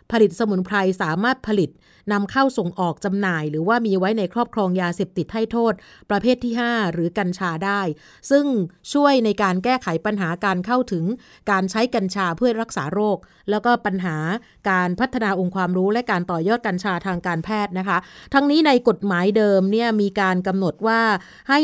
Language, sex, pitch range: Thai, female, 185-230 Hz